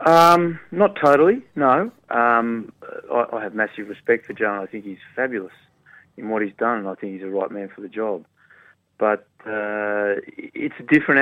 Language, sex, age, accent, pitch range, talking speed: English, male, 30-49, Australian, 105-120 Hz, 185 wpm